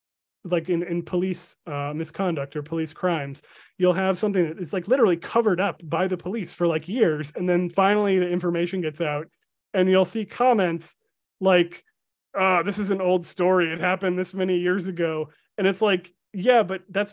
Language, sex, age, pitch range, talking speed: English, male, 30-49, 160-185 Hz, 195 wpm